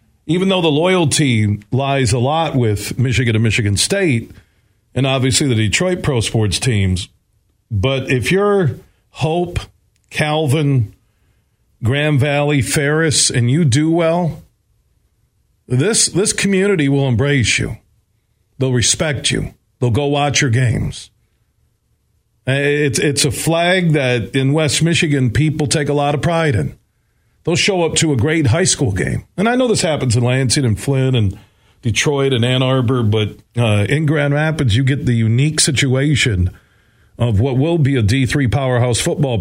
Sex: male